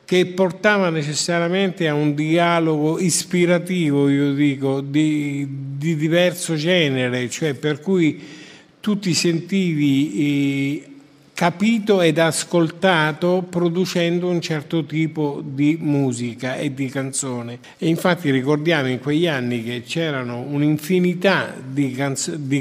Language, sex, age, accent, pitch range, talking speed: Italian, male, 50-69, native, 140-190 Hz, 110 wpm